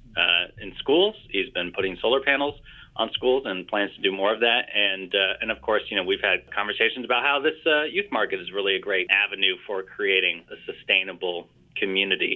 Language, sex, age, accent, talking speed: English, male, 30-49, American, 210 wpm